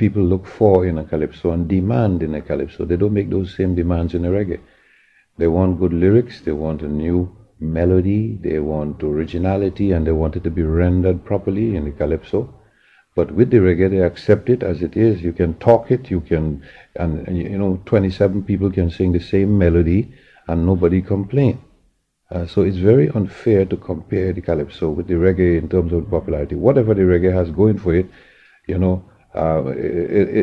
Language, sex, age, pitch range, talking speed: English, male, 60-79, 85-100 Hz, 200 wpm